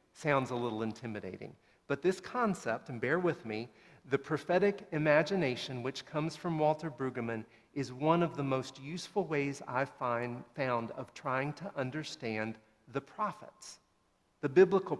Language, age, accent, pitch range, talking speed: English, 40-59, American, 125-170 Hz, 145 wpm